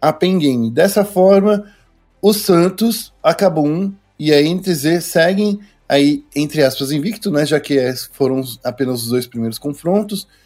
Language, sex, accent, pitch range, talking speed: Portuguese, male, Brazilian, 135-175 Hz, 145 wpm